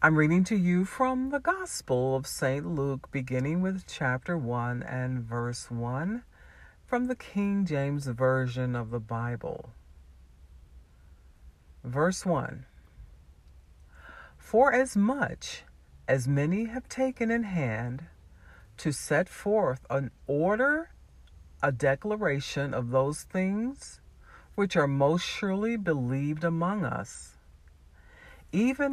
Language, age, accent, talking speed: English, 50-69, American, 110 wpm